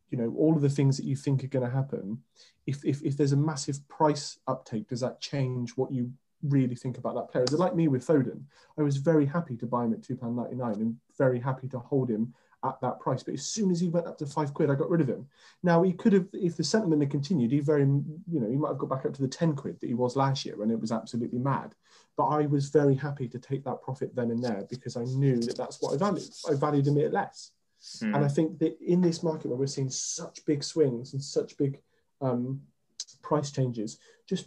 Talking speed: 260 wpm